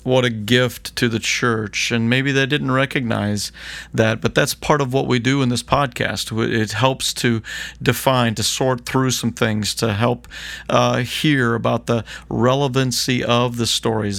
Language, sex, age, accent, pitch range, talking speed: English, male, 40-59, American, 110-130 Hz, 175 wpm